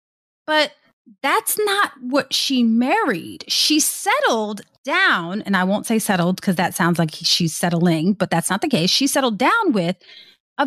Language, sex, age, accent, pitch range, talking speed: English, female, 30-49, American, 190-285 Hz, 170 wpm